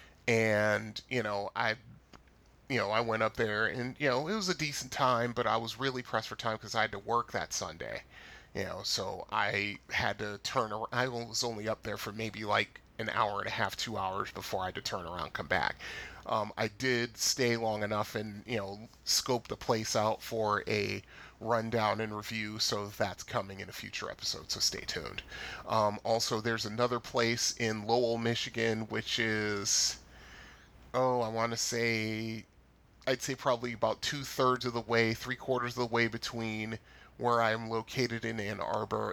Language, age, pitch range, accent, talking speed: English, 30-49, 105-120 Hz, American, 195 wpm